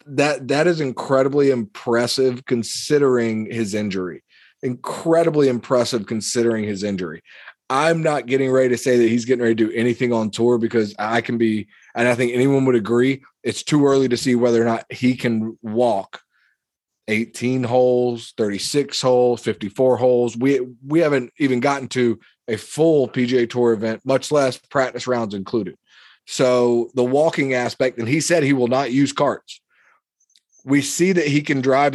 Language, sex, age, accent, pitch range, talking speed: English, male, 30-49, American, 115-135 Hz, 165 wpm